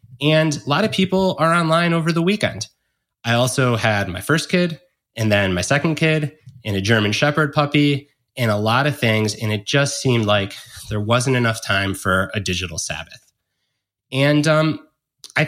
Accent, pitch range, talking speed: American, 110-145 Hz, 180 wpm